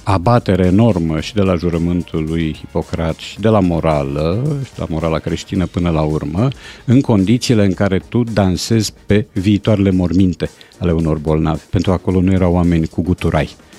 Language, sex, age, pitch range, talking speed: Romanian, male, 50-69, 90-115 Hz, 175 wpm